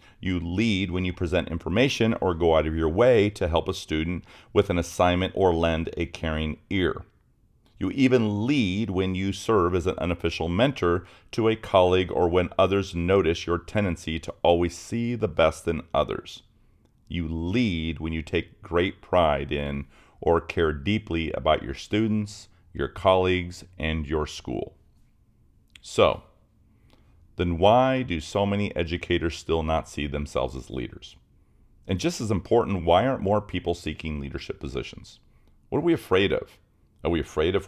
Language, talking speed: English, 160 wpm